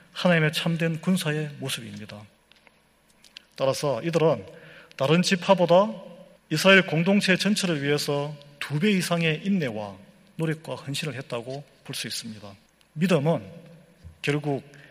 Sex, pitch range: male, 130-175 Hz